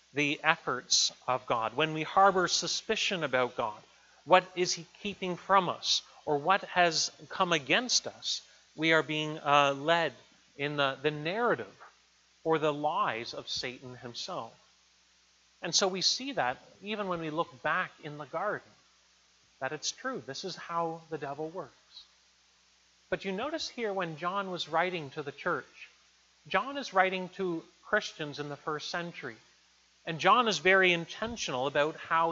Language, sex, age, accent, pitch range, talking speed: English, male, 40-59, American, 155-195 Hz, 160 wpm